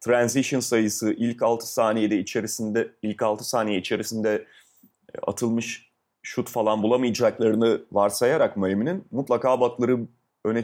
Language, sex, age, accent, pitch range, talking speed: Turkish, male, 30-49, native, 105-125 Hz, 105 wpm